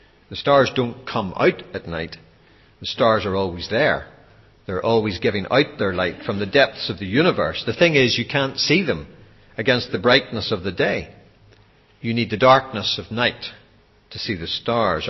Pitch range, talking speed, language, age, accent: 105-135 Hz, 185 wpm, English, 60-79, Irish